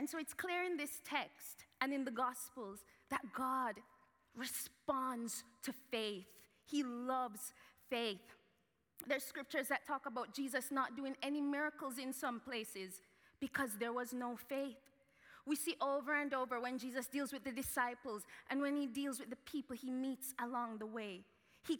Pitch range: 235-280 Hz